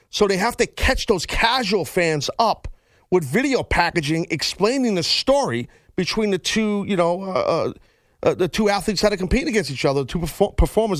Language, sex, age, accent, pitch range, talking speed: English, male, 40-59, American, 145-185 Hz, 190 wpm